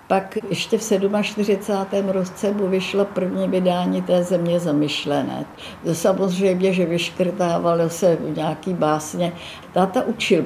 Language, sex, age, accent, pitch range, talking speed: Czech, female, 60-79, native, 160-180 Hz, 120 wpm